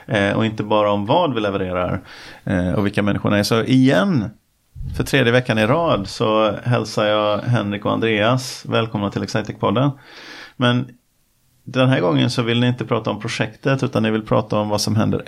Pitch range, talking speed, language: 100-120 Hz, 180 wpm, Swedish